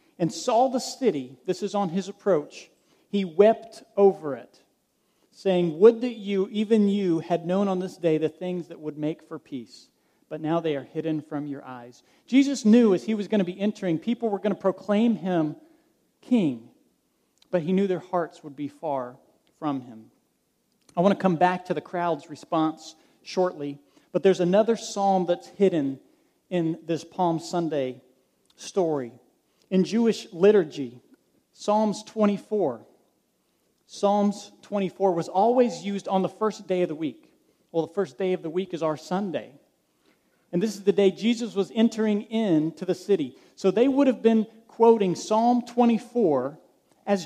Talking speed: 170 wpm